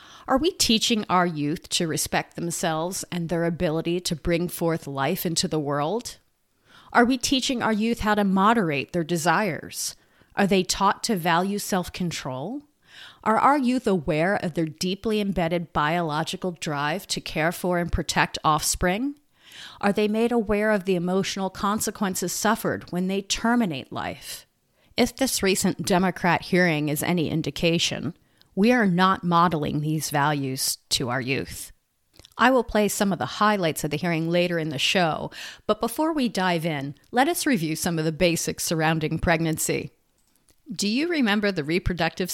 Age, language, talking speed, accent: 30-49, English, 160 wpm, American